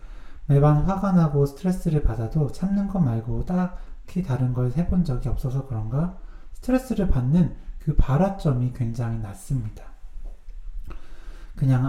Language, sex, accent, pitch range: Korean, male, native, 115-160 Hz